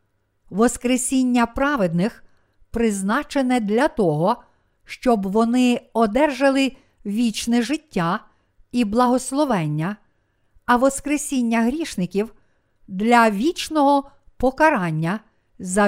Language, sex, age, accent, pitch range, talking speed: Ukrainian, female, 50-69, native, 175-265 Hz, 75 wpm